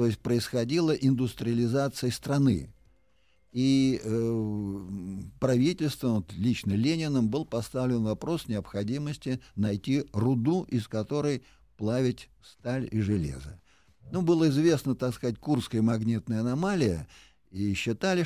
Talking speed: 110 wpm